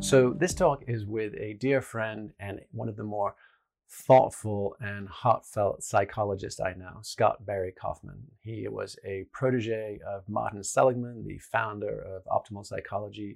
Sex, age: male, 40-59